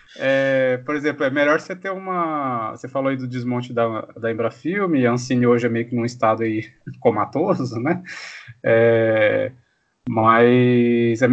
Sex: male